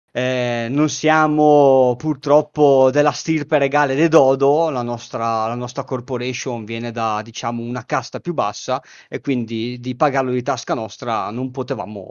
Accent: native